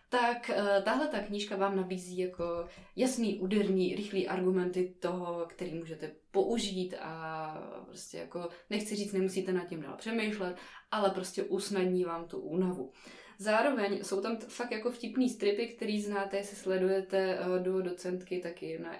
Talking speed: 155 wpm